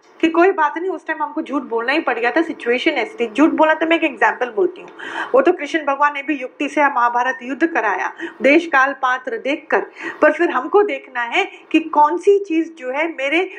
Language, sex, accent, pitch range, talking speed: Hindi, female, native, 255-365 Hz, 225 wpm